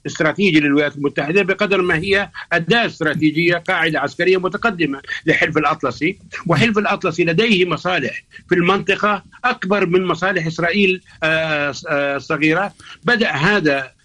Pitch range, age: 155-195 Hz, 50-69